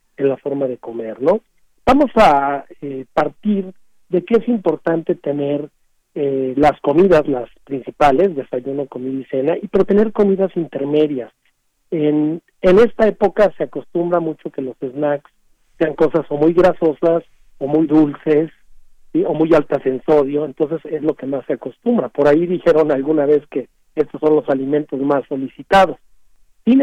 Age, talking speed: 50-69, 165 wpm